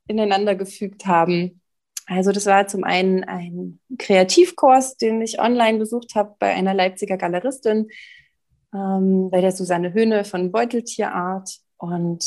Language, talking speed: German, 130 wpm